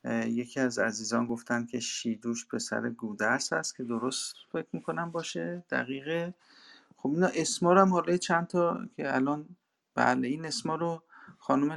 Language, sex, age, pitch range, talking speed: Persian, male, 50-69, 120-165 Hz, 140 wpm